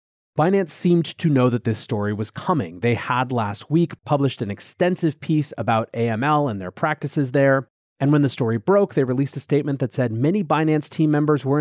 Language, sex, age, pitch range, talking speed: English, male, 30-49, 115-155 Hz, 200 wpm